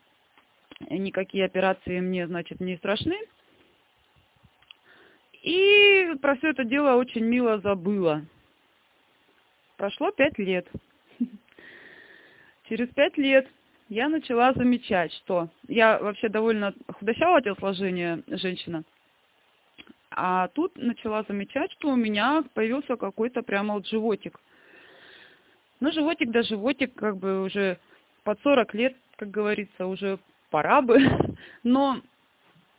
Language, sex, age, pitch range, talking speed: Russian, female, 20-39, 195-275 Hz, 105 wpm